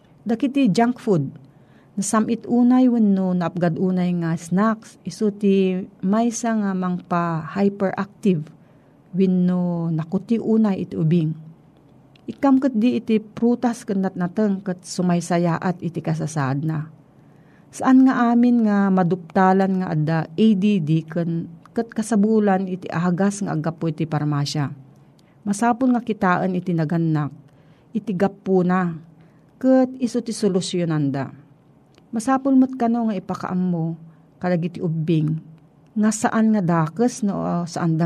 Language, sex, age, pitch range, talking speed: Filipino, female, 40-59, 160-215 Hz, 120 wpm